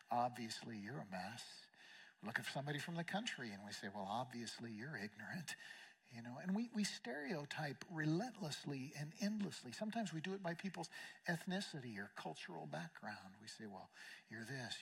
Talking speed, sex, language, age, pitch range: 165 wpm, male, English, 50-69, 145-200 Hz